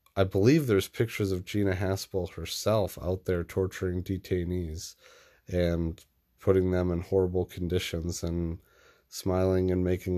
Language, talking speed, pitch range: English, 130 wpm, 85-100 Hz